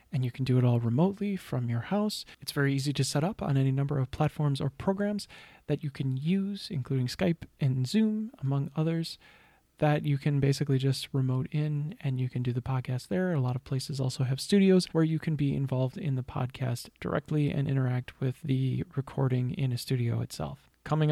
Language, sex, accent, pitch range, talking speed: English, male, American, 130-150 Hz, 205 wpm